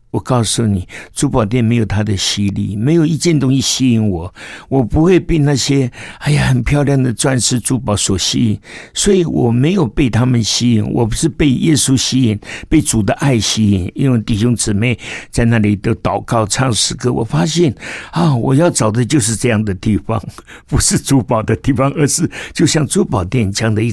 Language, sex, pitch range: Chinese, male, 105-130 Hz